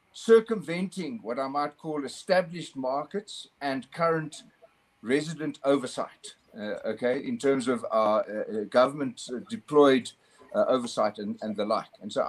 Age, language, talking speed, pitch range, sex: 50-69, English, 135 wpm, 140-230 Hz, male